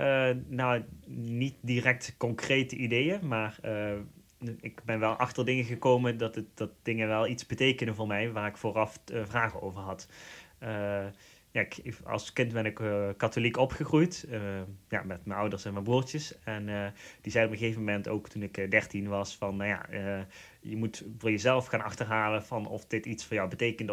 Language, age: Dutch, 20-39